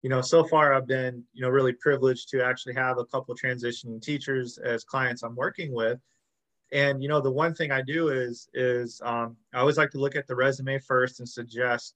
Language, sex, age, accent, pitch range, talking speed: English, male, 20-39, American, 125-150 Hz, 225 wpm